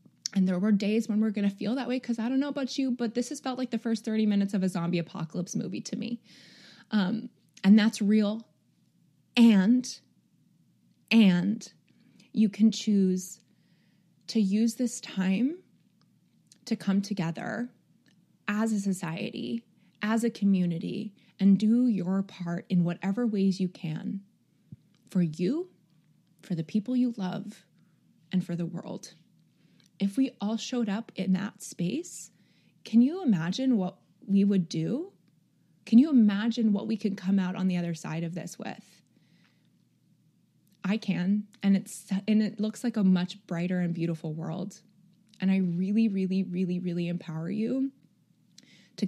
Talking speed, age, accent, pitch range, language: 155 wpm, 20-39, American, 180-220 Hz, English